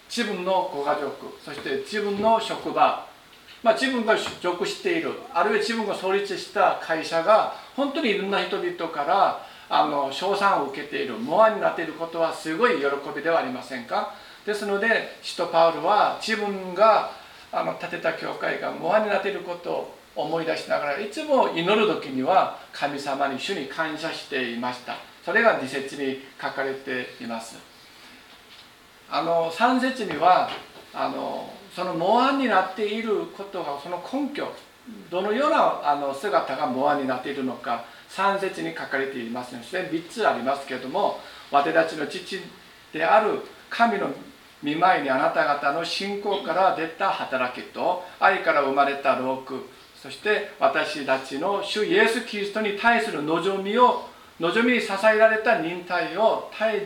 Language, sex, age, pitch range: Japanese, male, 50-69, 145-220 Hz